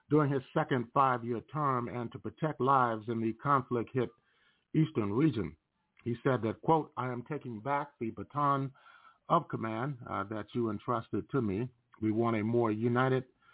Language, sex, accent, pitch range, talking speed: English, male, American, 110-135 Hz, 165 wpm